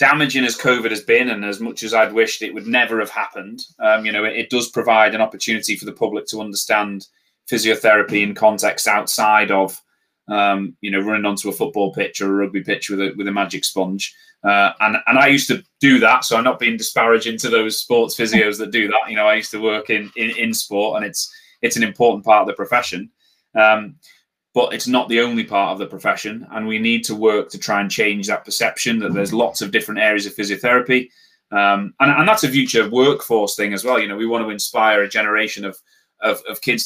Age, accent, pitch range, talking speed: 20-39, British, 100-115 Hz, 235 wpm